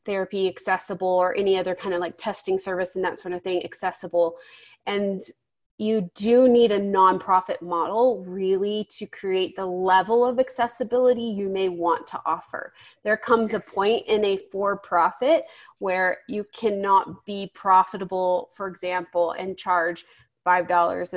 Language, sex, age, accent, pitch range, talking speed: English, female, 30-49, American, 185-220 Hz, 145 wpm